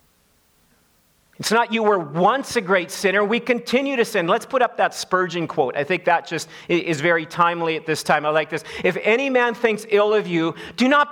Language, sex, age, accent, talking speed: English, male, 40-59, American, 215 wpm